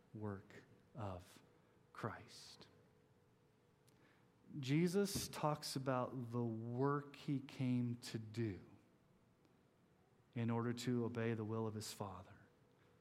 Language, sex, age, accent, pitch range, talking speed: English, male, 40-59, American, 120-155 Hz, 95 wpm